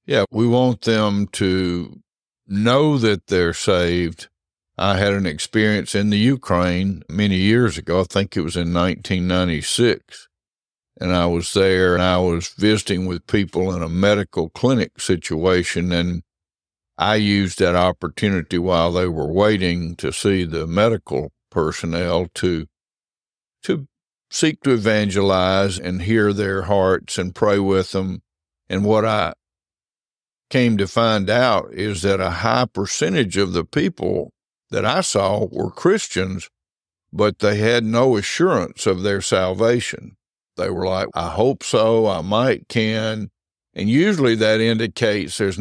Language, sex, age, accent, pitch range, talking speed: English, male, 60-79, American, 90-105 Hz, 145 wpm